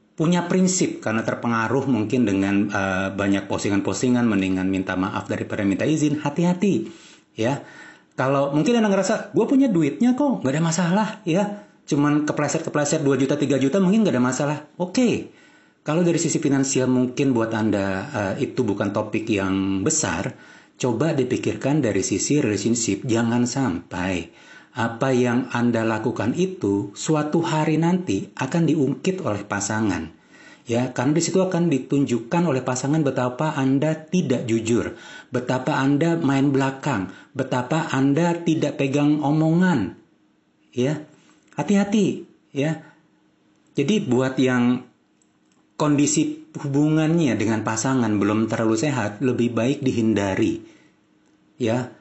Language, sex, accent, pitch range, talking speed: Indonesian, male, native, 115-155 Hz, 130 wpm